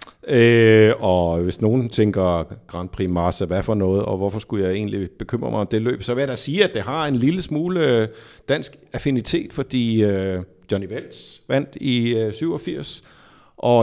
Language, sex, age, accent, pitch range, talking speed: Danish, male, 50-69, native, 110-145 Hz, 185 wpm